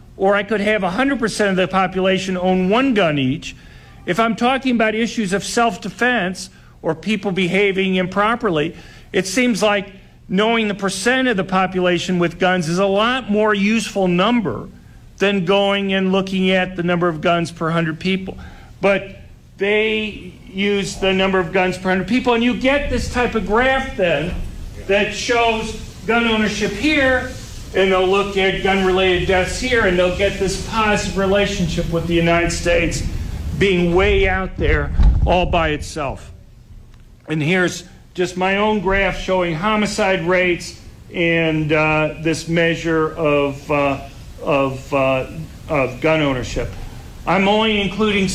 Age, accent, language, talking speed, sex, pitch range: 50-69, American, English, 150 wpm, male, 165-210 Hz